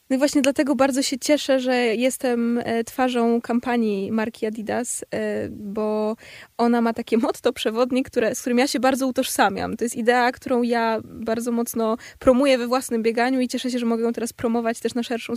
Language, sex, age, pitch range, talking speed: Polish, female, 20-39, 230-255 Hz, 185 wpm